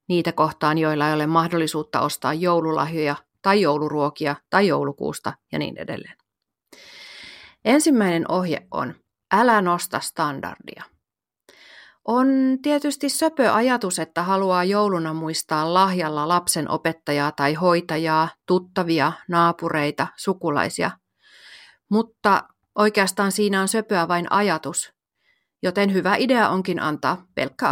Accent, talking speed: native, 110 wpm